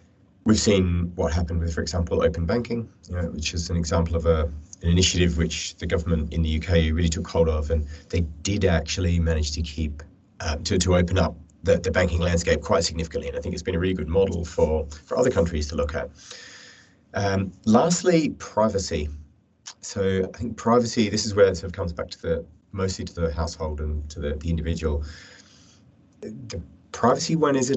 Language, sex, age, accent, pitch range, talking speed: English, male, 30-49, British, 80-95 Hz, 200 wpm